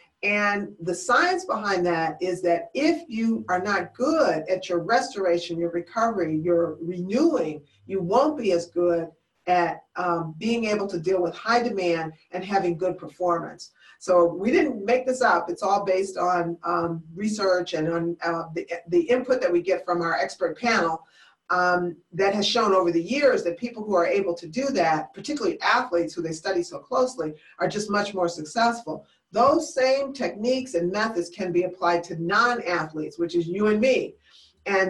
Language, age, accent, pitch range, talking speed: English, 40-59, American, 170-220 Hz, 180 wpm